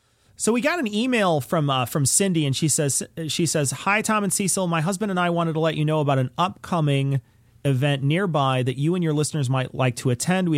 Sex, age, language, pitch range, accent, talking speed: male, 40-59, English, 125-165 Hz, American, 240 wpm